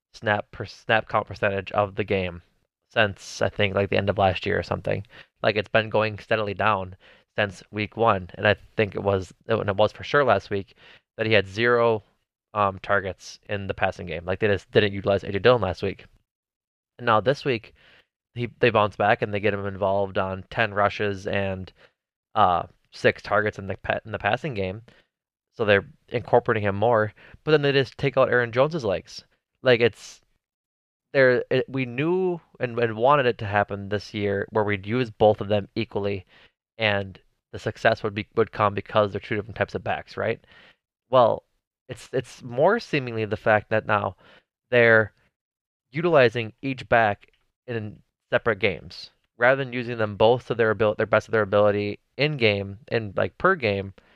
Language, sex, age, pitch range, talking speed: English, male, 20-39, 100-120 Hz, 190 wpm